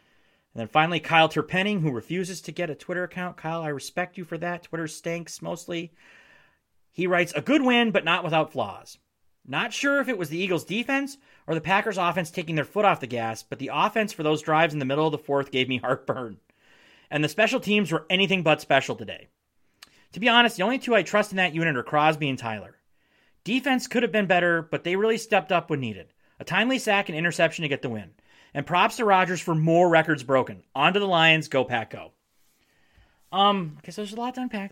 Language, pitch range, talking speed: English, 155-215 Hz, 225 wpm